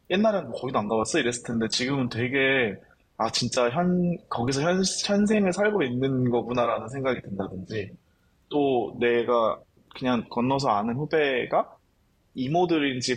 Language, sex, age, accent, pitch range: Korean, male, 20-39, native, 120-175 Hz